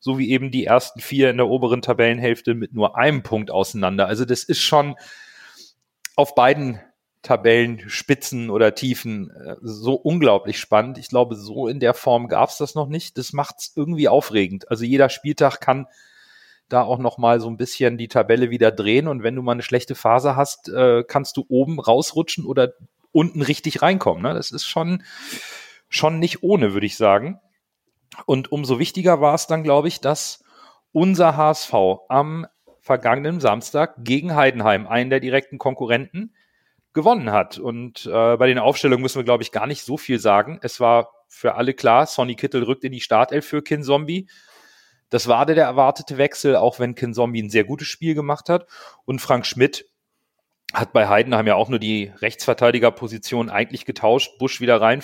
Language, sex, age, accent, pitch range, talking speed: German, male, 40-59, German, 120-150 Hz, 180 wpm